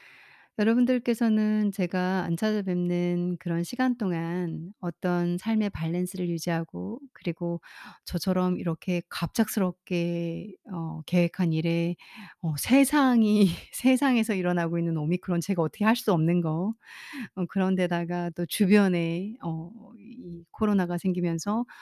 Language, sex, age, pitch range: Korean, female, 40-59, 170-215 Hz